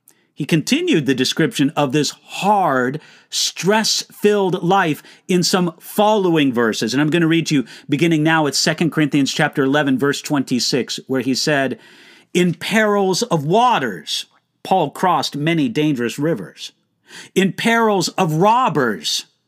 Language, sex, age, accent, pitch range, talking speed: English, male, 50-69, American, 150-205 Hz, 140 wpm